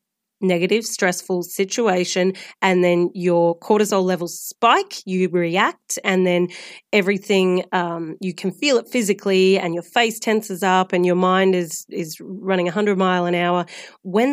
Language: English